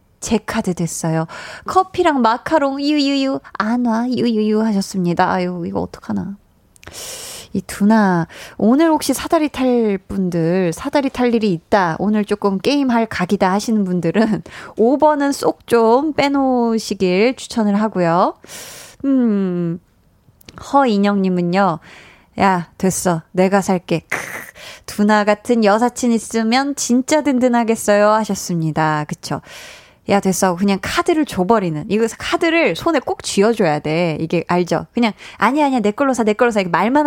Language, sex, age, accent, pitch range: Korean, female, 20-39, native, 180-245 Hz